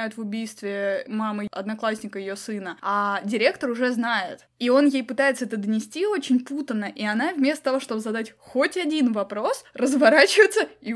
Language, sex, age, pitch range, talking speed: Russian, female, 20-39, 220-275 Hz, 160 wpm